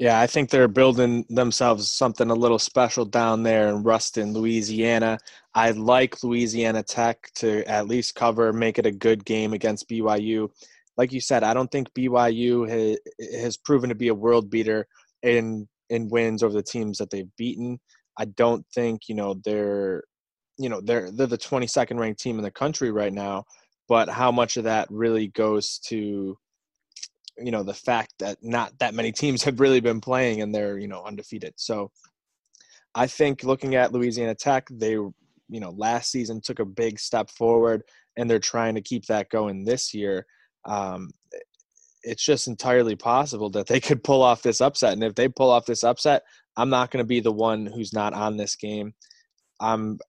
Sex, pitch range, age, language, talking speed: male, 110-125 Hz, 20-39, English, 190 wpm